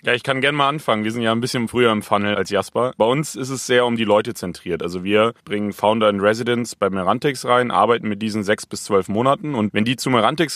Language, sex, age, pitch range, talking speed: German, male, 30-49, 95-115 Hz, 260 wpm